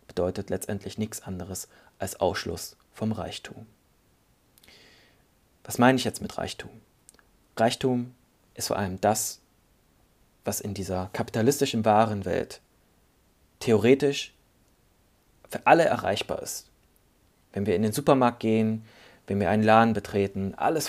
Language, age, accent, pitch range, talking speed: German, 30-49, German, 105-130 Hz, 120 wpm